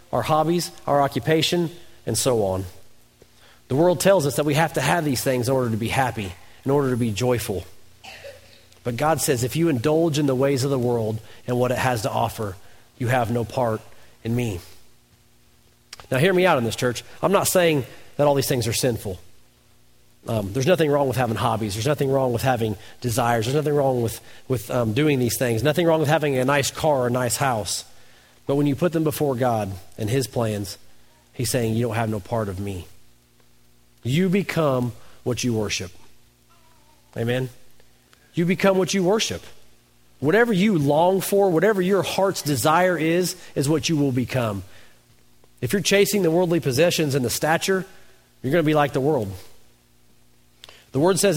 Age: 40-59